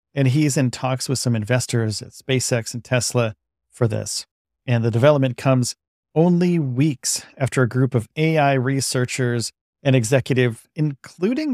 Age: 40-59